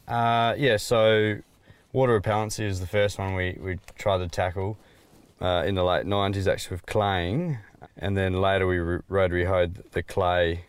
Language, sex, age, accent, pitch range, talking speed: English, male, 20-39, Australian, 90-100 Hz, 170 wpm